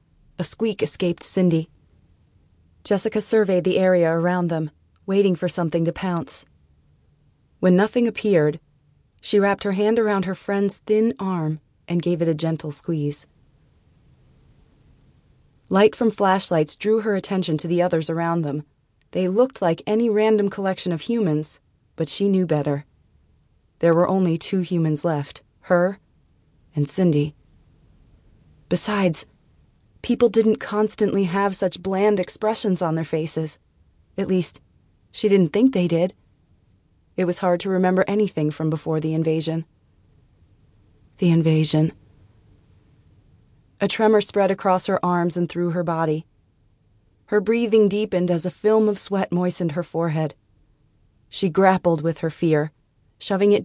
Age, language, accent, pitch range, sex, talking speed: 30-49, English, American, 145-195 Hz, female, 140 wpm